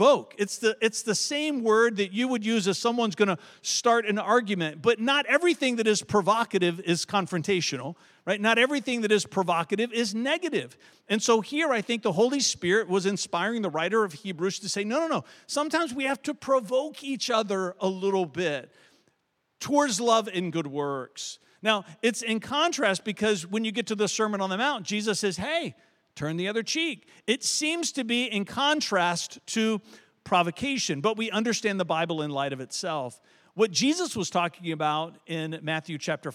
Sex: male